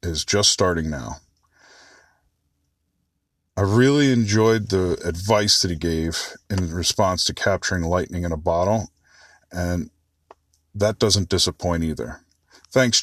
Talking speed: 120 wpm